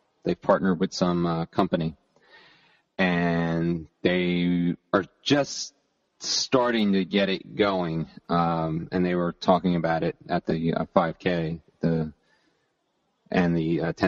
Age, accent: 30-49, American